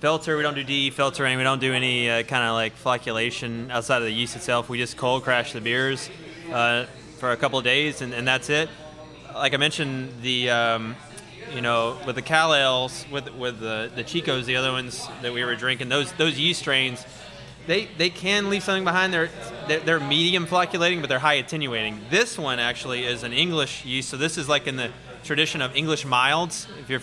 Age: 20-39